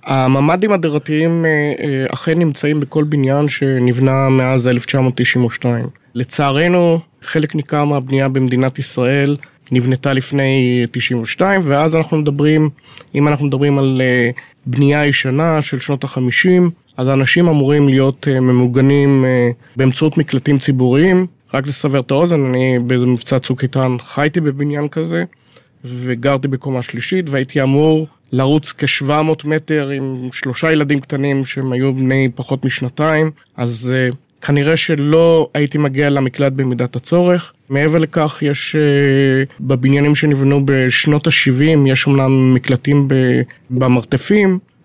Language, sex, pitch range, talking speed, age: Hebrew, male, 130-150 Hz, 115 wpm, 30-49